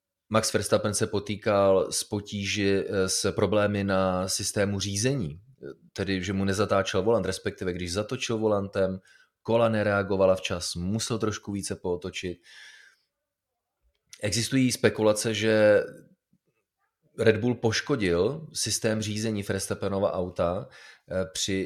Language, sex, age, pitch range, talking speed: Czech, male, 30-49, 95-110 Hz, 105 wpm